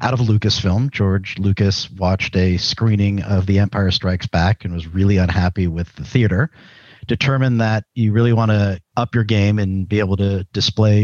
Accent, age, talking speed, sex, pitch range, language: American, 50-69, 185 wpm, male, 95-110 Hz, English